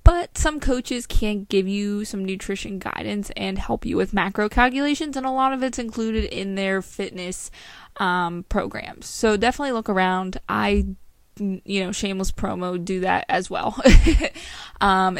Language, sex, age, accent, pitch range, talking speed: English, female, 20-39, American, 185-220 Hz, 160 wpm